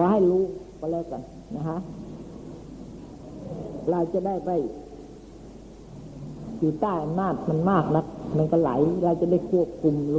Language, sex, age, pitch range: Thai, female, 60-79, 155-190 Hz